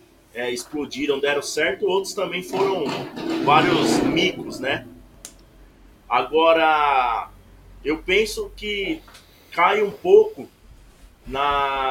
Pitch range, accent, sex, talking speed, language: 145-215 Hz, Brazilian, male, 90 wpm, Portuguese